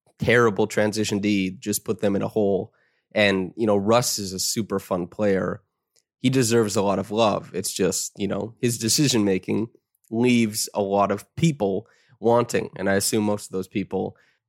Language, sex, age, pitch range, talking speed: English, male, 20-39, 95-115 Hz, 180 wpm